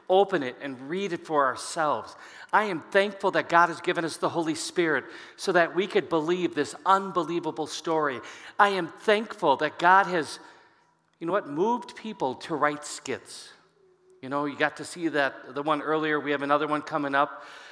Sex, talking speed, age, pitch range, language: male, 190 wpm, 50-69, 150-190 Hz, English